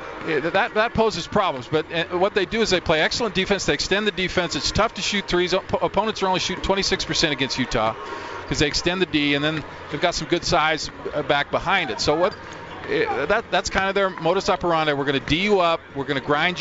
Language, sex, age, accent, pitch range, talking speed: English, male, 40-59, American, 145-185 Hz, 245 wpm